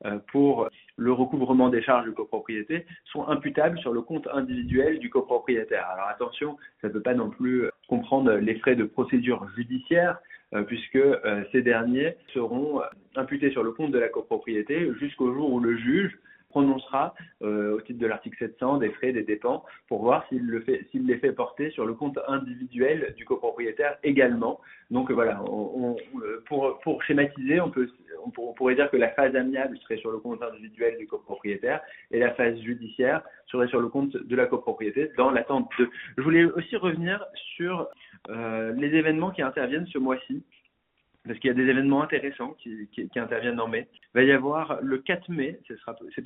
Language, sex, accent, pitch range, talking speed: French, male, French, 120-155 Hz, 185 wpm